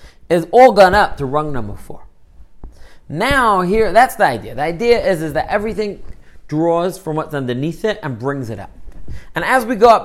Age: 30-49